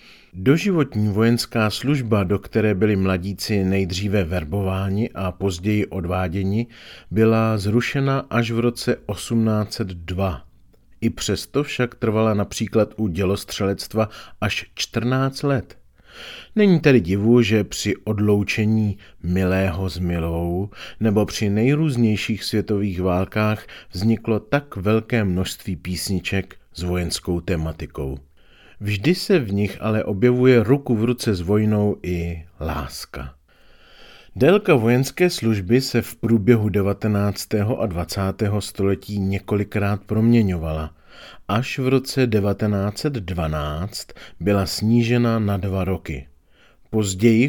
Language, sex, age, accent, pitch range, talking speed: Czech, male, 40-59, native, 95-115 Hz, 105 wpm